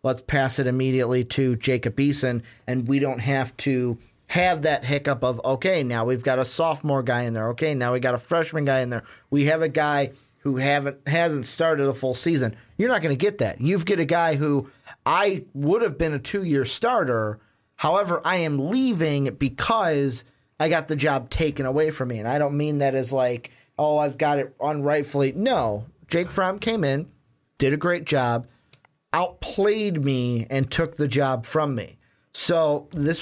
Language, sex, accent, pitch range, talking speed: English, male, American, 125-150 Hz, 195 wpm